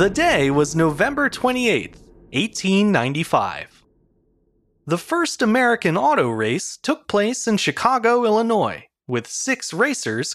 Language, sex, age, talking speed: English, male, 30-49, 110 wpm